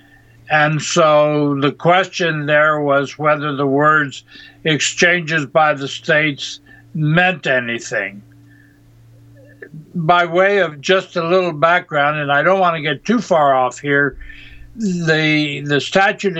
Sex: male